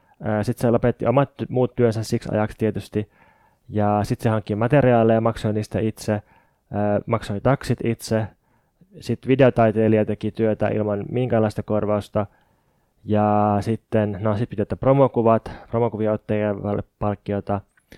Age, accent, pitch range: 20-39, native, 105-120 Hz